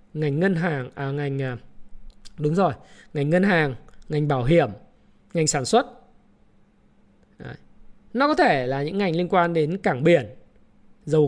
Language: Vietnamese